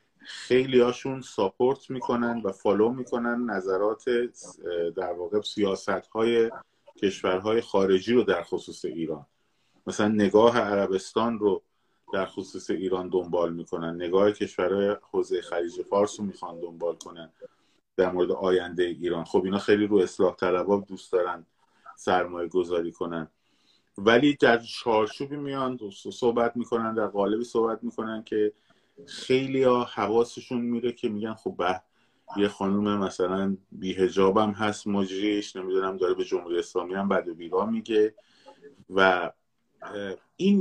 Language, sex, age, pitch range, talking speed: Persian, male, 30-49, 95-125 Hz, 130 wpm